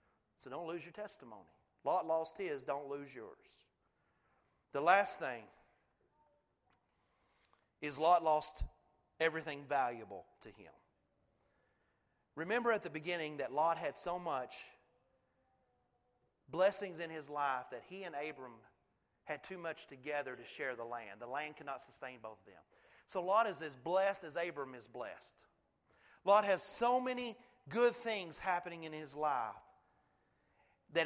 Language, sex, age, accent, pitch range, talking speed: English, male, 40-59, American, 155-225 Hz, 140 wpm